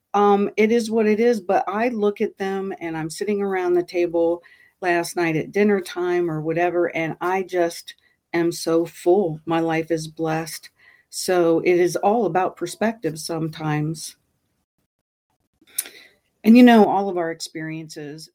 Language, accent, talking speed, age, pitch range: English, American, 155 wpm, 50-69, 160-185 Hz